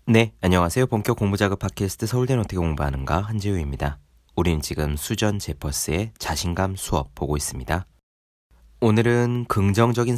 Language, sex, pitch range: Korean, male, 75-110 Hz